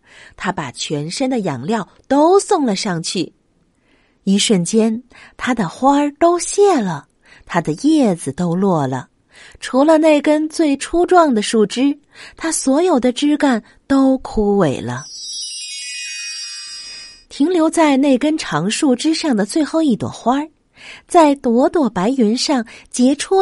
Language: Chinese